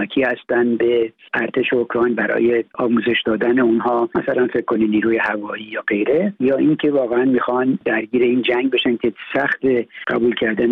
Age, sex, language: 60-79, male, Persian